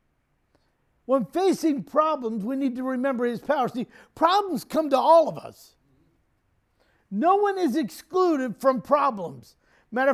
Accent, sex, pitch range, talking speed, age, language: American, male, 220-305 Hz, 135 wpm, 50-69, English